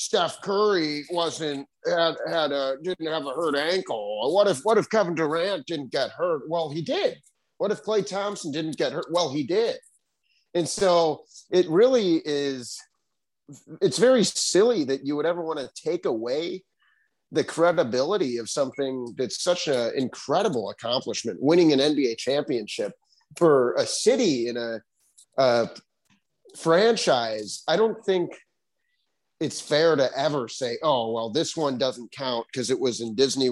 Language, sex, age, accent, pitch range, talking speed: English, male, 30-49, American, 140-205 Hz, 155 wpm